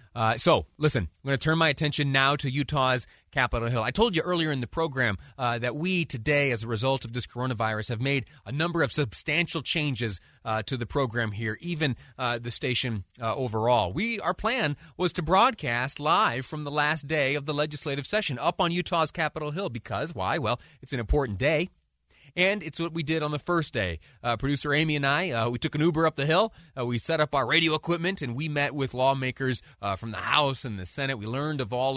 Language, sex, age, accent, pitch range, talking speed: English, male, 30-49, American, 120-150 Hz, 225 wpm